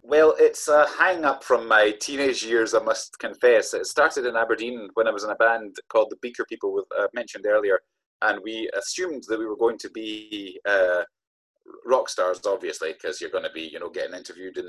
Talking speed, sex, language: 215 wpm, male, English